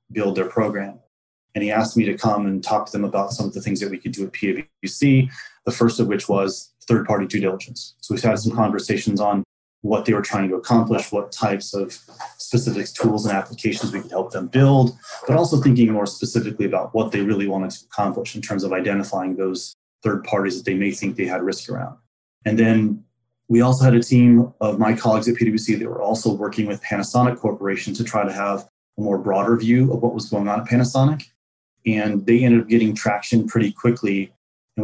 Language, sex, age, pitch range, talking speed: English, male, 30-49, 100-115 Hz, 215 wpm